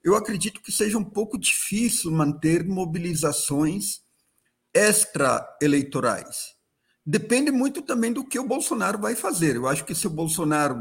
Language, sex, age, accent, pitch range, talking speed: Portuguese, male, 50-69, Brazilian, 150-205 Hz, 140 wpm